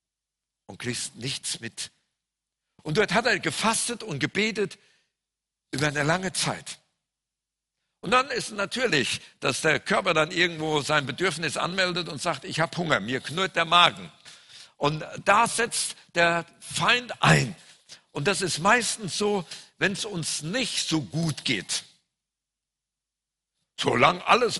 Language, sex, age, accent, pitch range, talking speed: German, male, 60-79, German, 150-200 Hz, 135 wpm